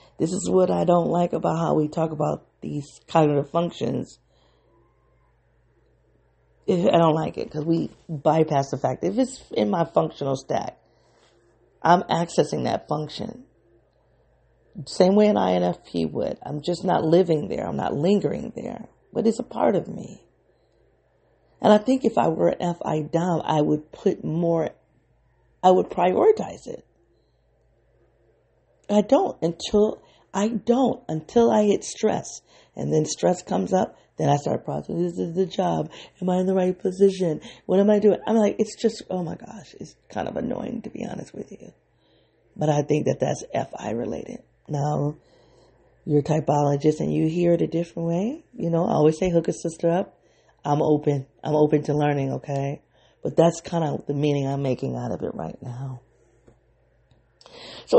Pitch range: 150-195 Hz